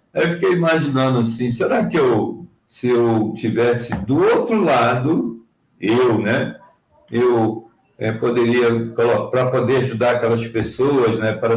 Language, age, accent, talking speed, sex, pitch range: Portuguese, 60-79, Brazilian, 130 wpm, male, 115-160 Hz